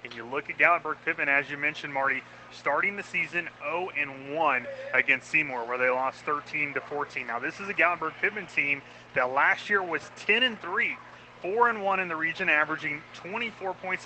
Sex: male